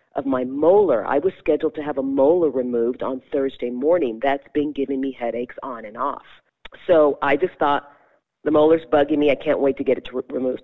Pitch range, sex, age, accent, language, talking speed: 130-155 Hz, female, 40-59, American, English, 210 wpm